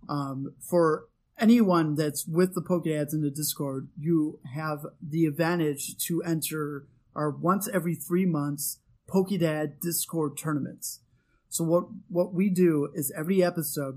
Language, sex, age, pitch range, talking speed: English, male, 30-49, 145-175 Hz, 140 wpm